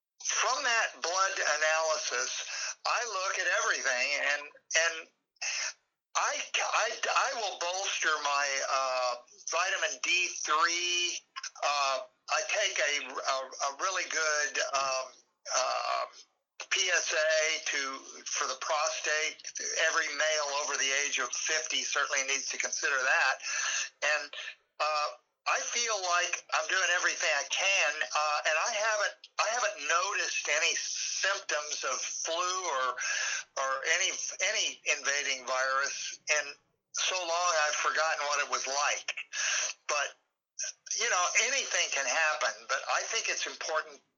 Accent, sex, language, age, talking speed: American, male, English, 50-69, 130 wpm